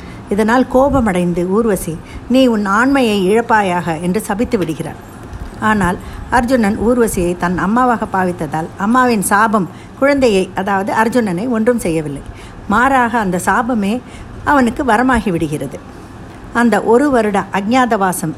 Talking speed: 105 wpm